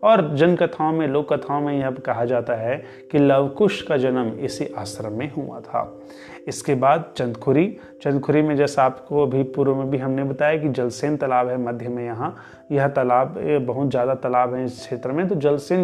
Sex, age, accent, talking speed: male, 30-49, native, 195 wpm